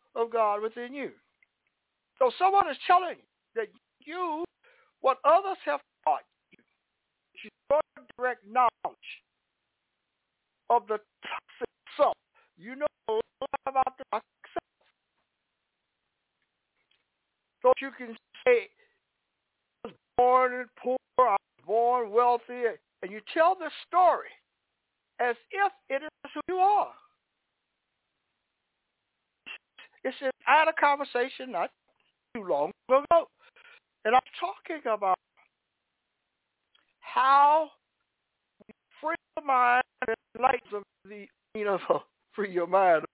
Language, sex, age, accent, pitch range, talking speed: English, male, 60-79, American, 225-320 Hz, 115 wpm